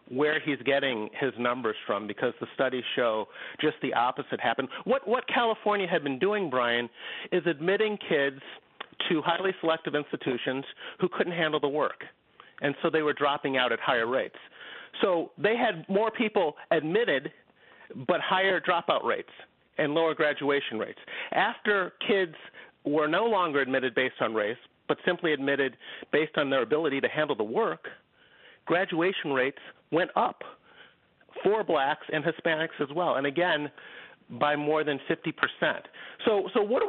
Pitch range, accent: 145-185 Hz, American